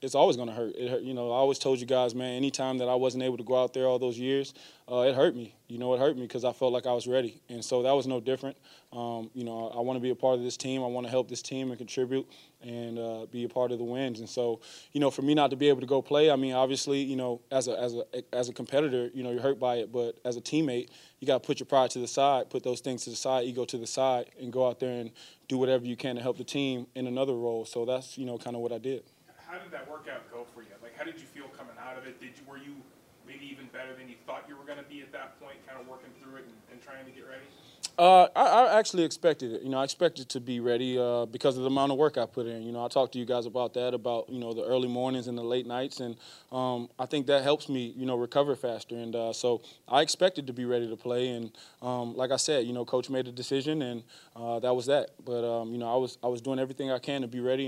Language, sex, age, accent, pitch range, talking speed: English, male, 20-39, American, 120-135 Hz, 305 wpm